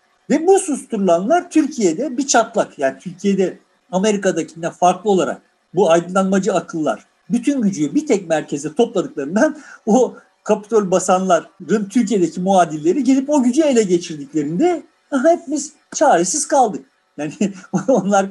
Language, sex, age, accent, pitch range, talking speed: Turkish, male, 50-69, native, 185-285 Hz, 120 wpm